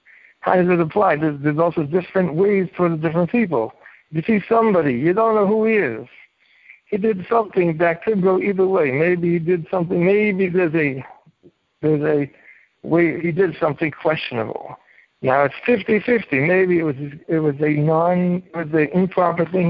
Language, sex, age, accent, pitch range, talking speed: English, male, 60-79, American, 155-195 Hz, 180 wpm